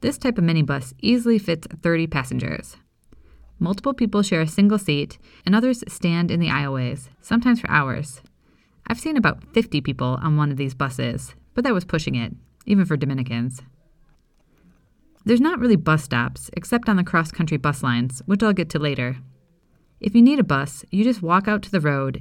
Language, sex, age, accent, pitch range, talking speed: English, female, 30-49, American, 140-205 Hz, 185 wpm